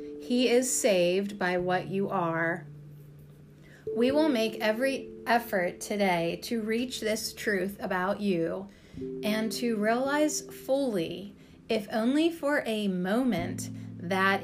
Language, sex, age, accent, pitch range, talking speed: English, female, 30-49, American, 160-220 Hz, 120 wpm